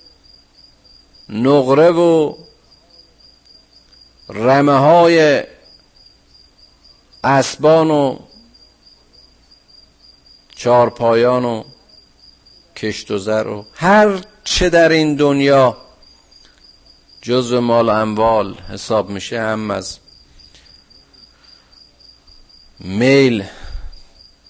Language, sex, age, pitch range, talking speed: Persian, male, 50-69, 100-155 Hz, 65 wpm